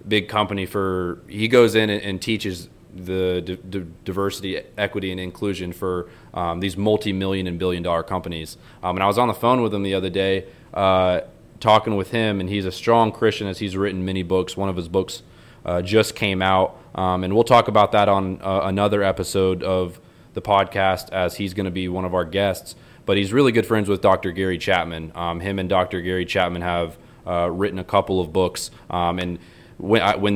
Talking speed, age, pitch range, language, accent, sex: 200 wpm, 20-39, 90-105 Hz, English, American, male